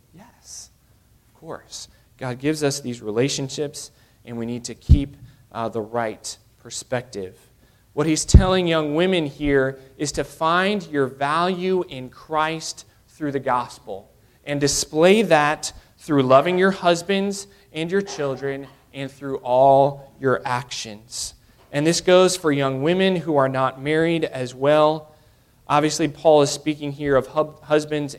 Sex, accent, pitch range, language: male, American, 120-155 Hz, English